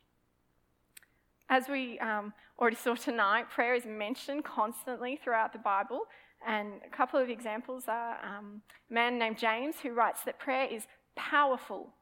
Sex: female